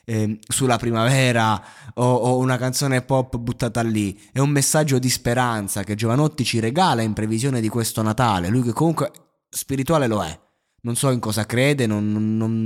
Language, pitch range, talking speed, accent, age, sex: Italian, 100-130 Hz, 170 wpm, native, 20-39, male